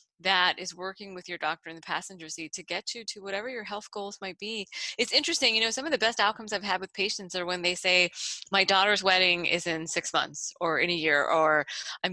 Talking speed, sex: 245 wpm, female